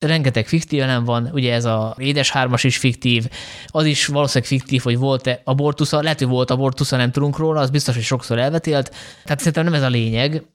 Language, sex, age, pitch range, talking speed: Hungarian, male, 20-39, 125-145 Hz, 205 wpm